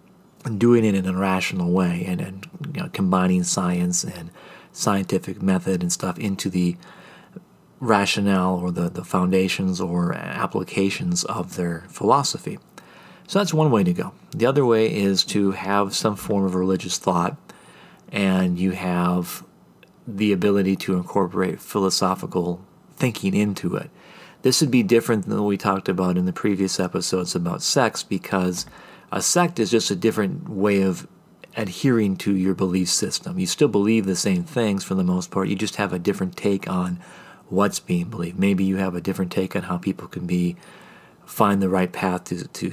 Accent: American